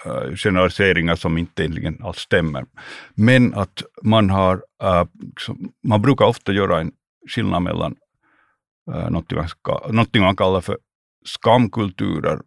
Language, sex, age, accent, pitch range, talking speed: Swedish, male, 60-79, Finnish, 90-105 Hz, 120 wpm